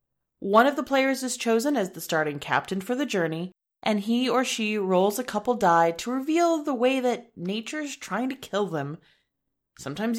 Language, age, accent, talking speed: English, 30-49, American, 190 wpm